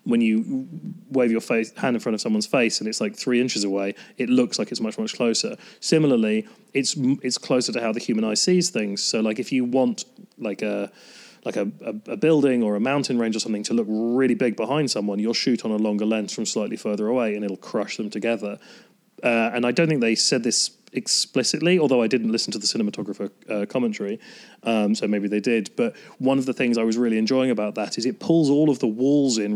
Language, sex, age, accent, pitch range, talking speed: English, male, 30-49, British, 110-135 Hz, 235 wpm